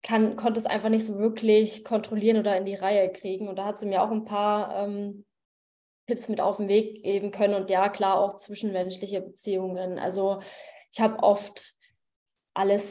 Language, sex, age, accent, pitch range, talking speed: German, female, 20-39, German, 205-235 Hz, 185 wpm